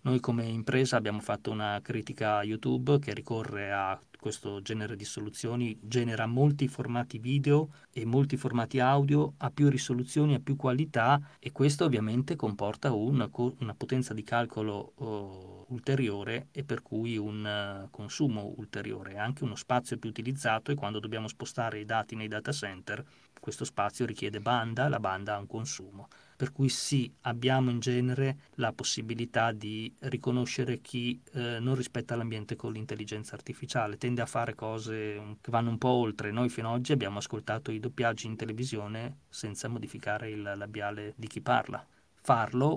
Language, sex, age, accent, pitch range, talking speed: Italian, male, 20-39, native, 105-130 Hz, 165 wpm